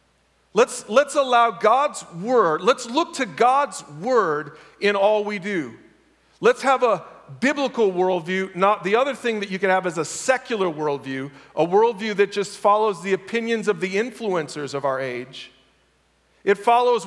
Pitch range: 145-210 Hz